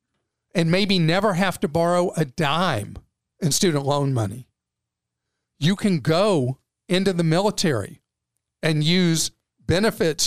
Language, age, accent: English, 50-69, American